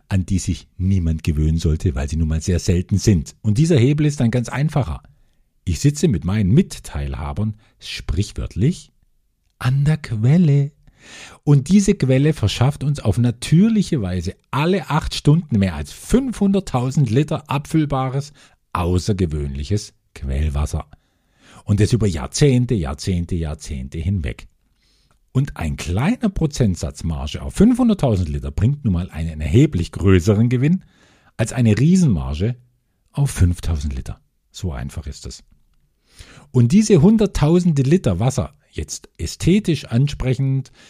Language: German